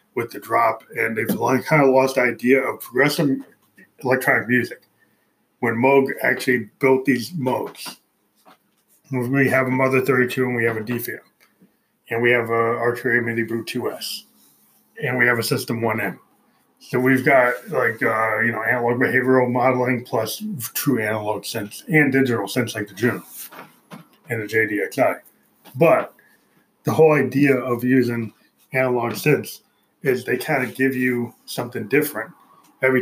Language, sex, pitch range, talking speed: English, male, 120-135 Hz, 150 wpm